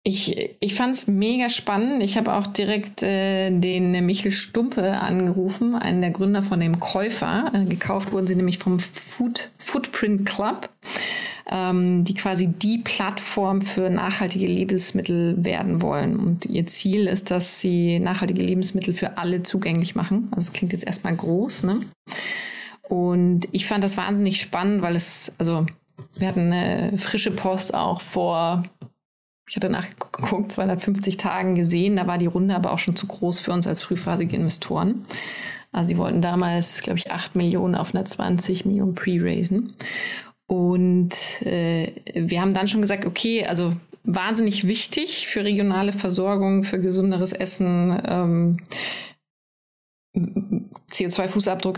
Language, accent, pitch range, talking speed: German, German, 180-205 Hz, 145 wpm